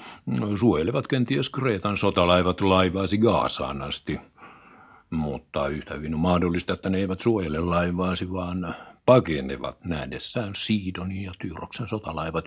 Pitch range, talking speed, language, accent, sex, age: 85-120 Hz, 115 wpm, Finnish, native, male, 60-79